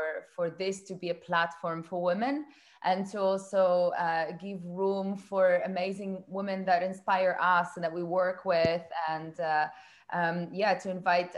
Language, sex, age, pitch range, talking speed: English, female, 20-39, 180-205 Hz, 165 wpm